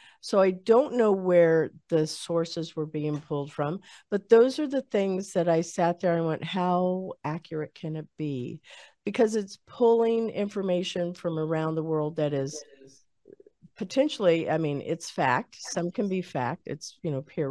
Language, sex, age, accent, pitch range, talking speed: English, female, 50-69, American, 150-195 Hz, 170 wpm